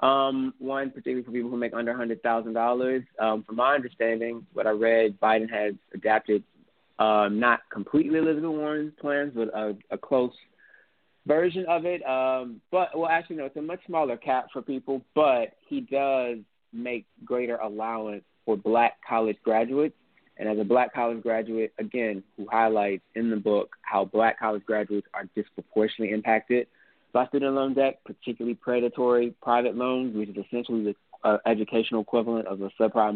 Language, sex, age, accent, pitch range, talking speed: English, male, 20-39, American, 110-130 Hz, 165 wpm